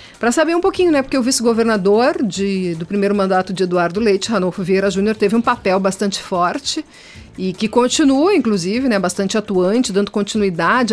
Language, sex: Portuguese, female